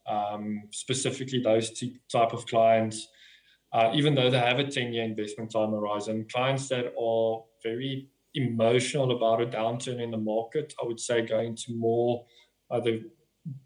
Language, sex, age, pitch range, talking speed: English, male, 20-39, 110-125 Hz, 165 wpm